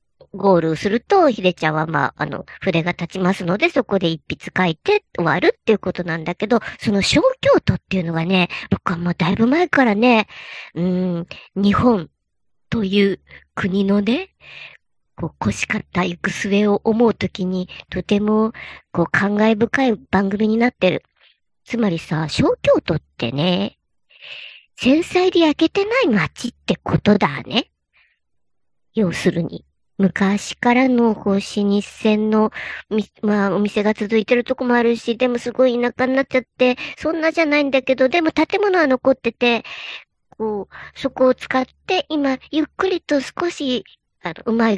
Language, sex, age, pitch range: Japanese, male, 50-69, 190-260 Hz